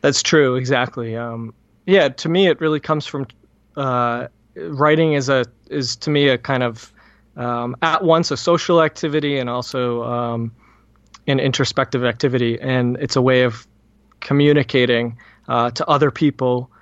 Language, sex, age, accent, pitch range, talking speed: English, male, 20-39, American, 125-150 Hz, 155 wpm